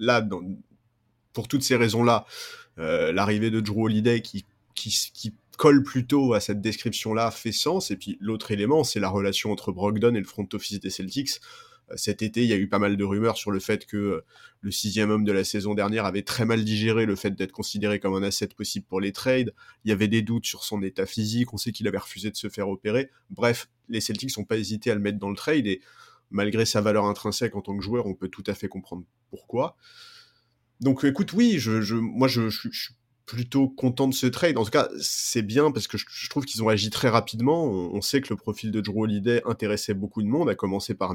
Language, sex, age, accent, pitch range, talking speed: French, male, 30-49, French, 100-120 Hz, 245 wpm